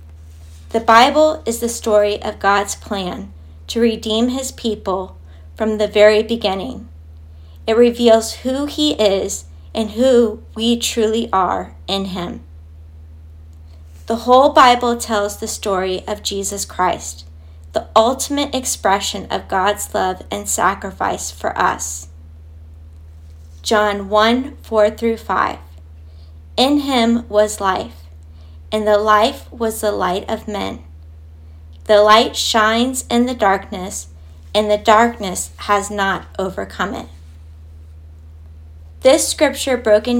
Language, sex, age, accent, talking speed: English, female, 40-59, American, 115 wpm